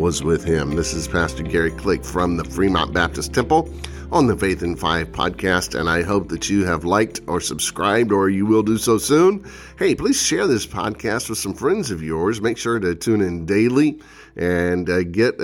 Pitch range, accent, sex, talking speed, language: 85-105 Hz, American, male, 200 wpm, English